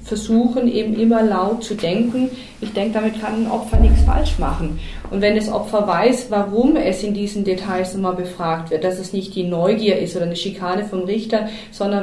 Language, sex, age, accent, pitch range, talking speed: German, female, 30-49, German, 185-220 Hz, 200 wpm